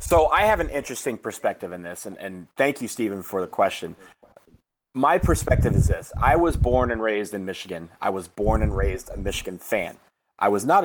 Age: 30-49